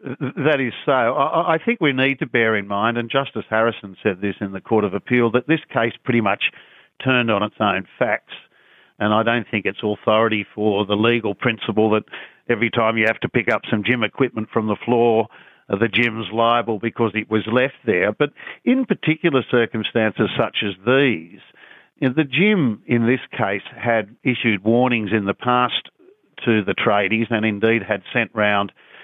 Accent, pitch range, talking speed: Australian, 105-120 Hz, 185 wpm